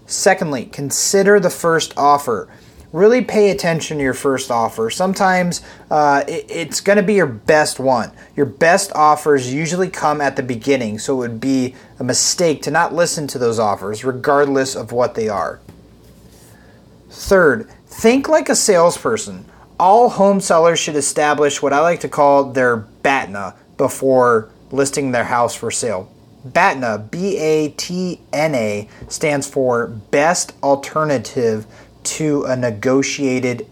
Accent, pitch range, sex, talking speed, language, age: American, 130-175 Hz, male, 140 wpm, English, 30-49